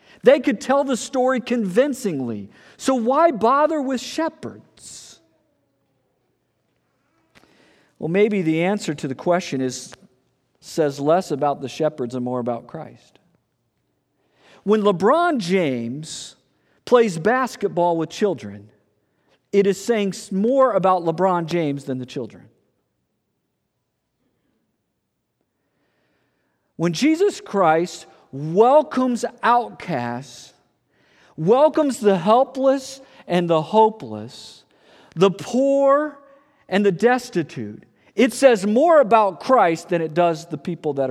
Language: English